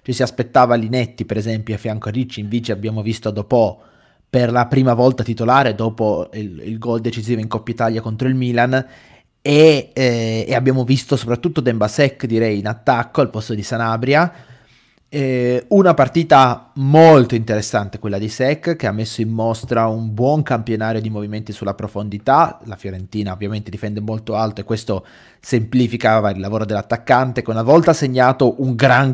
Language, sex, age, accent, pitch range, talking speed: Italian, male, 20-39, native, 110-130 Hz, 170 wpm